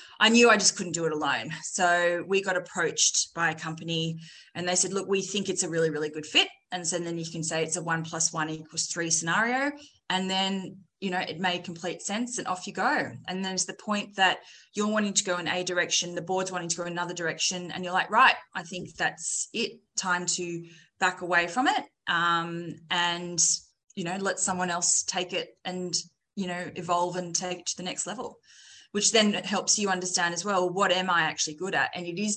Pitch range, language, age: 165-190 Hz, English, 20-39